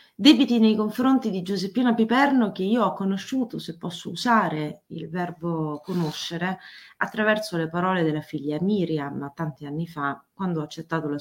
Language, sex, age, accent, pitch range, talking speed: Italian, female, 30-49, native, 155-195 Hz, 155 wpm